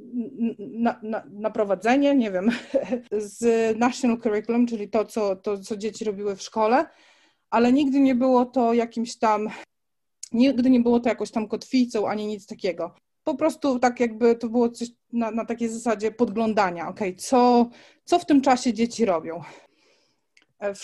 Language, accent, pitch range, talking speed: Polish, native, 205-245 Hz, 160 wpm